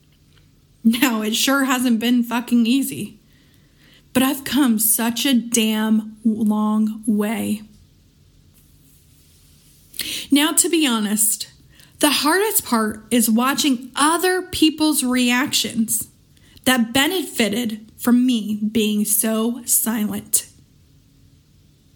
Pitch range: 215-265 Hz